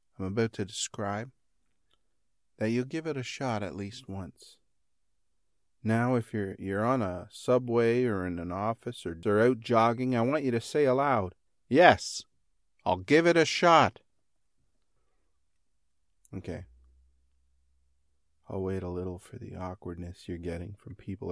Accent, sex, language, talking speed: American, male, English, 145 wpm